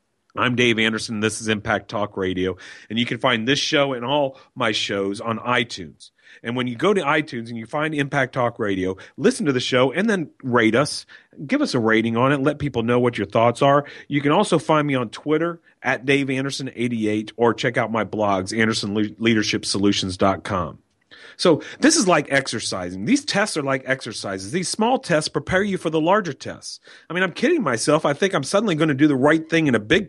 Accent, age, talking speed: American, 40-59, 210 wpm